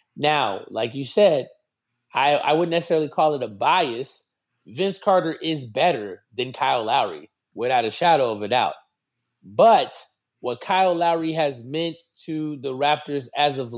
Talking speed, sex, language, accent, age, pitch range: 155 wpm, male, English, American, 30-49, 120-150 Hz